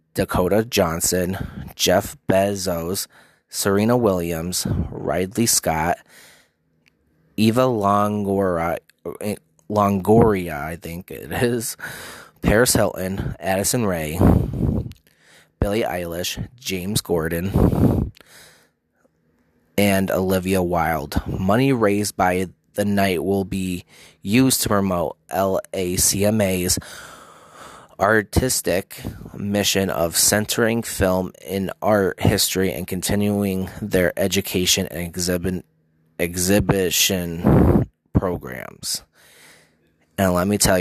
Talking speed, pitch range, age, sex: 80 wpm, 85-100 Hz, 20-39, male